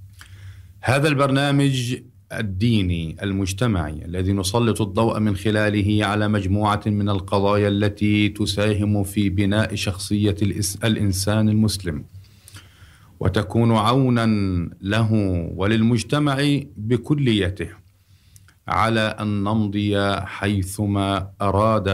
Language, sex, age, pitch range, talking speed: Arabic, male, 50-69, 95-110 Hz, 80 wpm